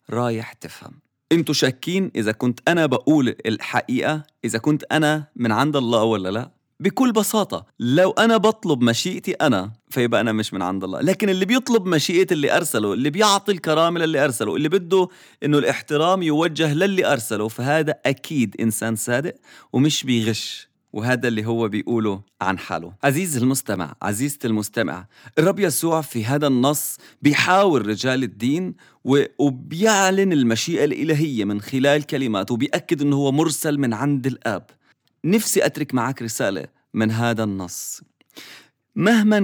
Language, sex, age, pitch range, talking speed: English, male, 30-49, 115-160 Hz, 140 wpm